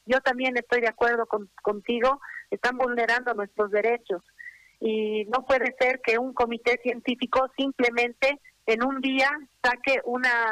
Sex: female